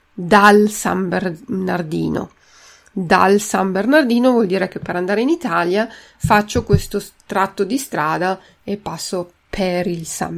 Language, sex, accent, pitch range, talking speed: Italian, female, native, 190-240 Hz, 135 wpm